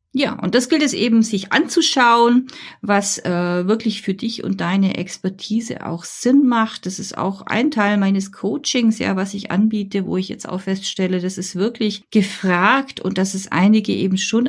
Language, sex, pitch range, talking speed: German, female, 190-225 Hz, 185 wpm